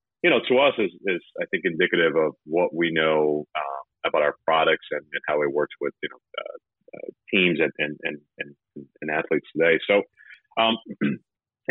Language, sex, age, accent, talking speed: English, male, 30-49, American, 190 wpm